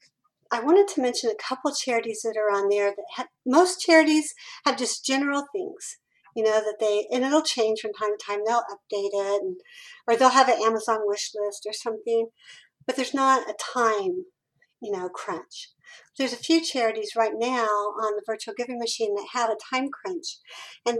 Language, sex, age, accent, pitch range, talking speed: English, female, 50-69, American, 220-270 Hz, 195 wpm